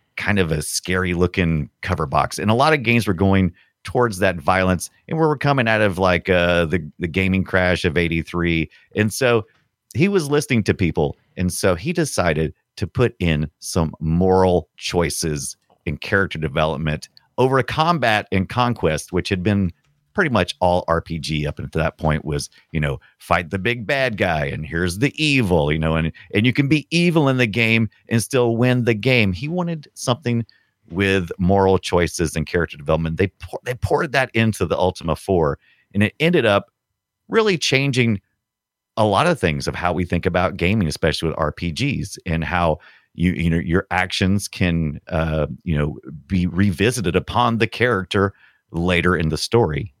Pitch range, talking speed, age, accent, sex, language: 85-115 Hz, 180 wpm, 40-59, American, male, English